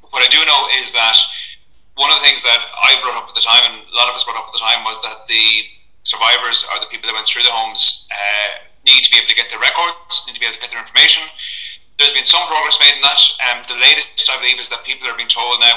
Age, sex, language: 30-49, male, English